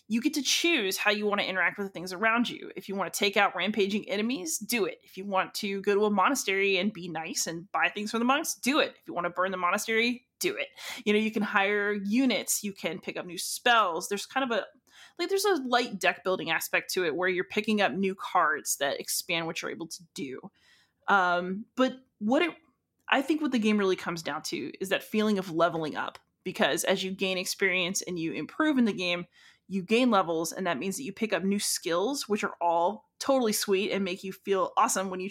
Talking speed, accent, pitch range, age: 245 wpm, American, 185-235 Hz, 20-39